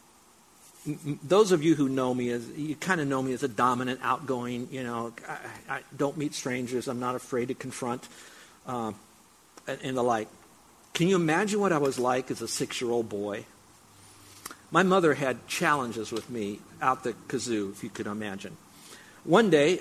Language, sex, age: English, male, 50-69